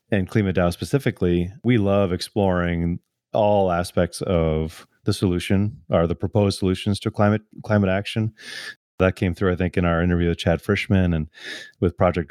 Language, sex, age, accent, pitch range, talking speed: English, male, 30-49, American, 90-105 Hz, 165 wpm